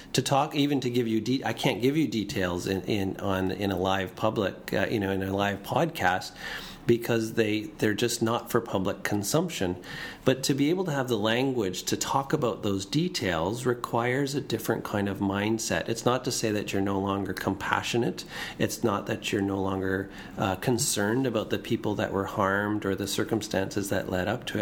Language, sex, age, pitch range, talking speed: English, male, 40-59, 100-120 Hz, 200 wpm